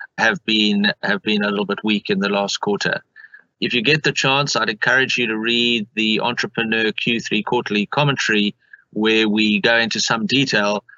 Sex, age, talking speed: male, 40-59, 180 wpm